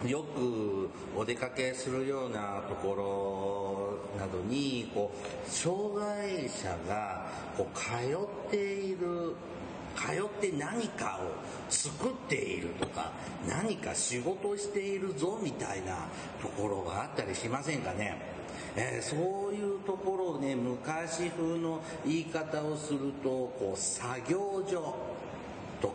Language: Japanese